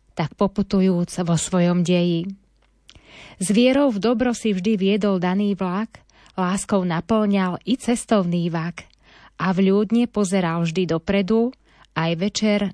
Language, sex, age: Slovak, female, 20-39